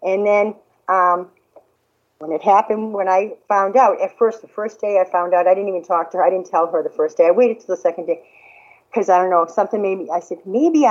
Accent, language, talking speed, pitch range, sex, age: American, English, 260 wpm, 175-230 Hz, female, 50-69